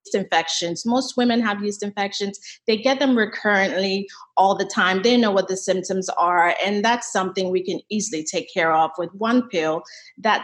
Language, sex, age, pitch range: English, female, 30-49, 195-245 Hz